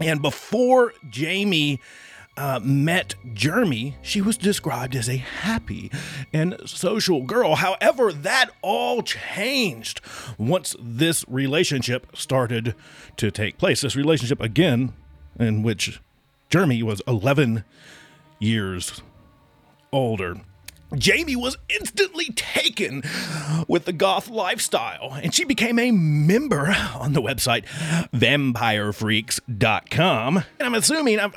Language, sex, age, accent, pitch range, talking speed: English, male, 30-49, American, 110-165 Hz, 110 wpm